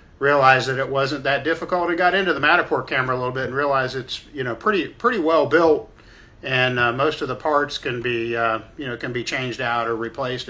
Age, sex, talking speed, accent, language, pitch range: 50-69, male, 235 wpm, American, English, 120-140 Hz